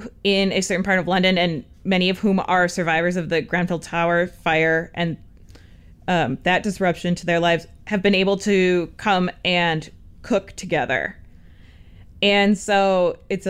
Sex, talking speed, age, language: female, 155 wpm, 20-39, English